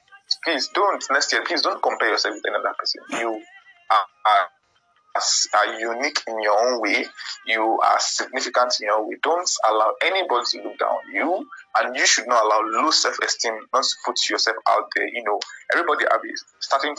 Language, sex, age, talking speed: English, male, 20-39, 185 wpm